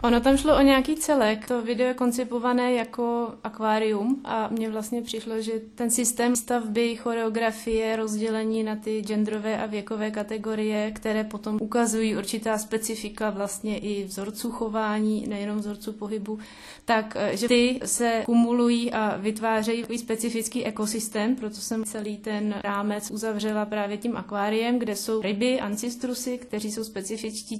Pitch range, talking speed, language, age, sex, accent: 210-230 Hz, 145 wpm, Czech, 20-39, female, native